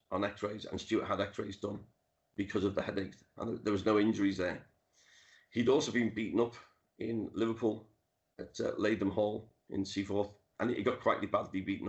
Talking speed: 180 wpm